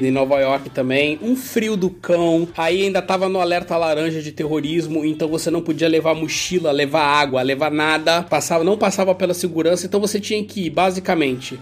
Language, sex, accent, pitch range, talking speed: Portuguese, male, Brazilian, 165-215 Hz, 185 wpm